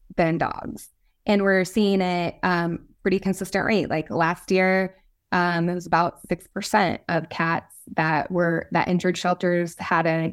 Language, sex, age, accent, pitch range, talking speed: English, female, 20-39, American, 180-215 Hz, 155 wpm